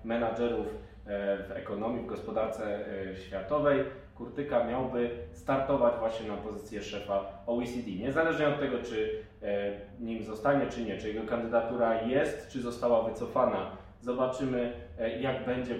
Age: 20-39